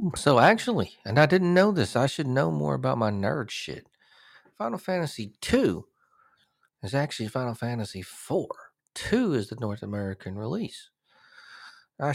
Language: English